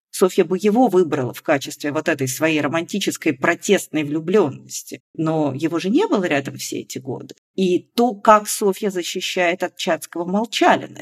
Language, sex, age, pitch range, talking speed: Russian, female, 40-59, 150-185 Hz, 160 wpm